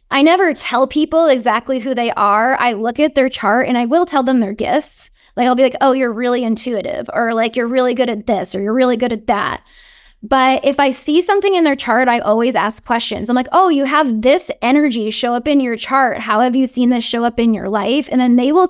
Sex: female